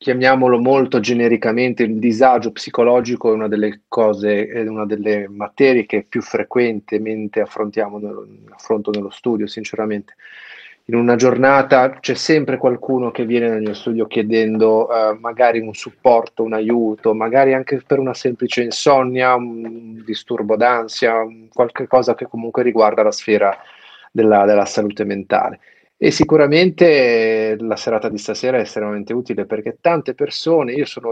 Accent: native